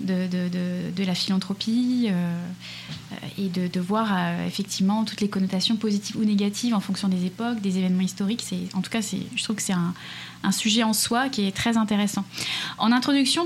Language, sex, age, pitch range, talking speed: French, female, 20-39, 195-240 Hz, 205 wpm